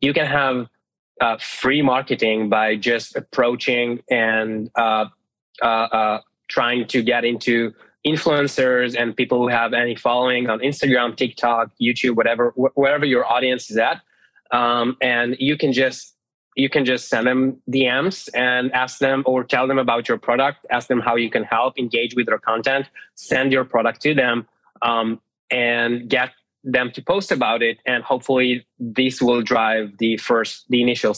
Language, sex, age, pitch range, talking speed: English, male, 20-39, 120-135 Hz, 165 wpm